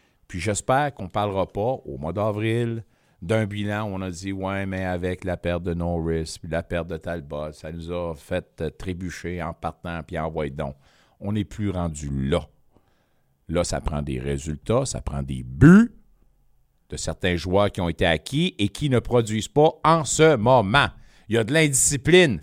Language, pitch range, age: French, 95-150 Hz, 50-69